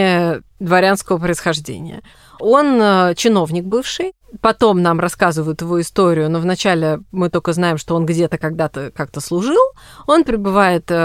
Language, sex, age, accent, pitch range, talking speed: Russian, female, 20-39, native, 165-220 Hz, 125 wpm